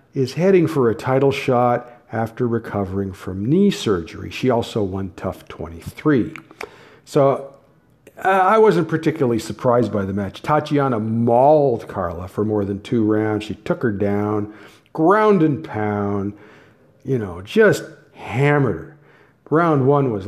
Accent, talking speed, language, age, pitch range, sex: American, 140 wpm, English, 50-69, 105-155 Hz, male